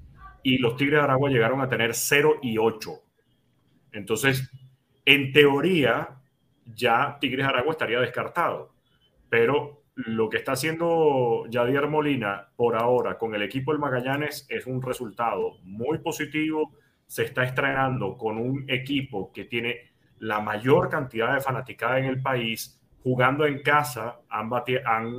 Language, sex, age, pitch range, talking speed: Spanish, male, 30-49, 120-140 Hz, 140 wpm